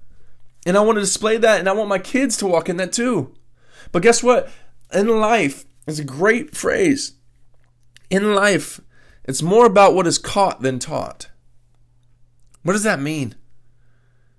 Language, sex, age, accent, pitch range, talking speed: English, male, 20-39, American, 130-195 Hz, 165 wpm